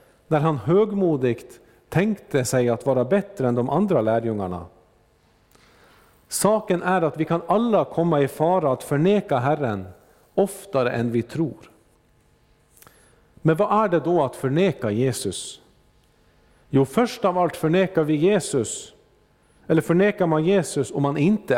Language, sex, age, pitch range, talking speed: Swedish, male, 50-69, 125-185 Hz, 140 wpm